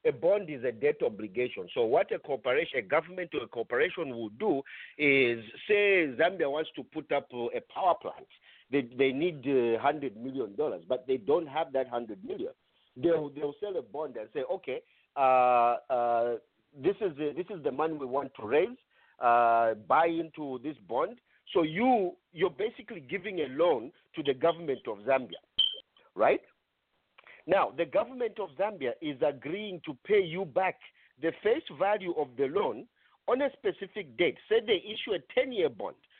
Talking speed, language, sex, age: 175 wpm, English, male, 50-69